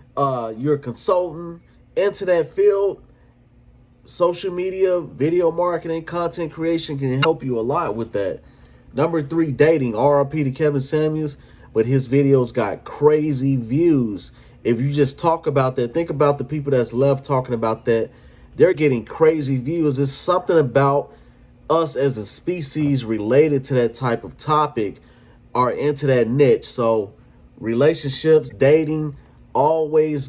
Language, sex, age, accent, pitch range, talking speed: English, male, 30-49, American, 130-165 Hz, 145 wpm